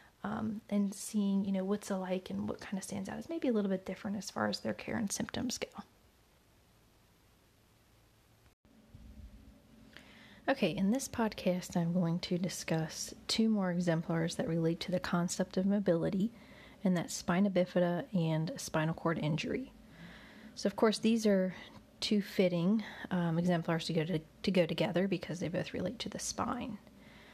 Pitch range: 170-200 Hz